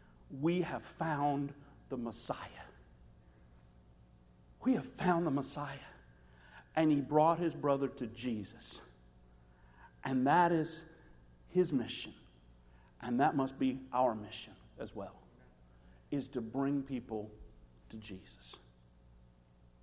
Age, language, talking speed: 50-69, English, 110 wpm